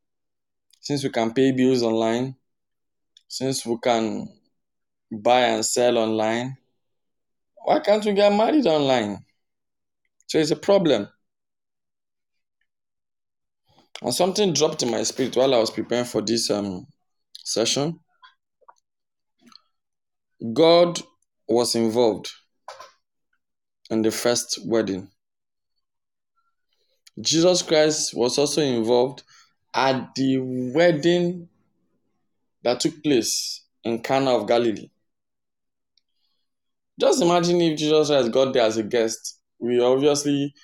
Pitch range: 115-150 Hz